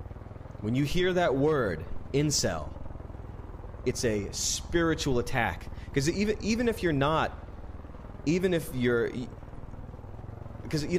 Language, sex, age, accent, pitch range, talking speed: English, male, 30-49, American, 100-145 Hz, 115 wpm